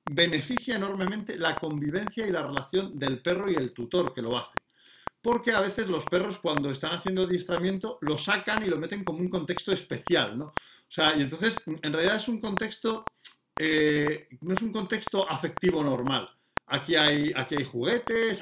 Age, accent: 50-69, Spanish